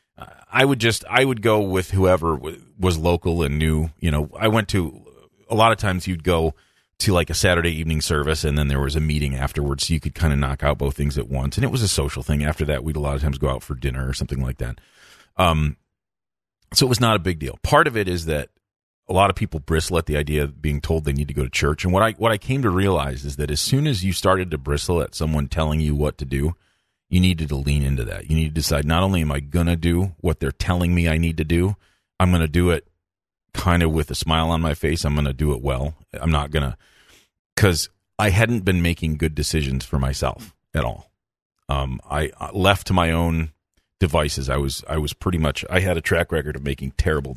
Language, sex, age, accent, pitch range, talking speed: English, male, 40-59, American, 75-95 Hz, 255 wpm